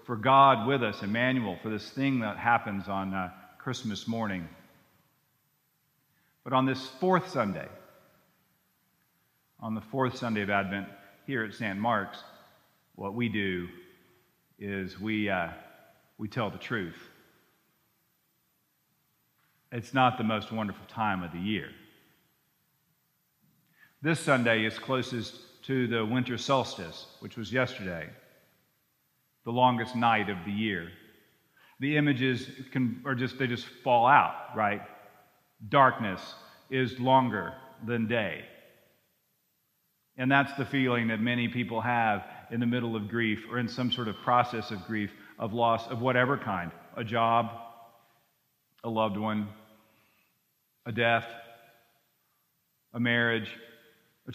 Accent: American